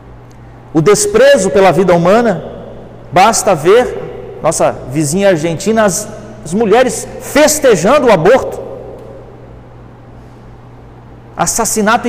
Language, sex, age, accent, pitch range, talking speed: Portuguese, male, 50-69, Brazilian, 185-280 Hz, 85 wpm